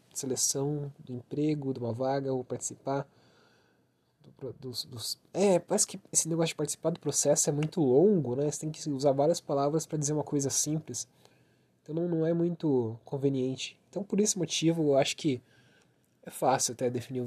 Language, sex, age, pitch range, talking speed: Portuguese, male, 20-39, 125-160 Hz, 185 wpm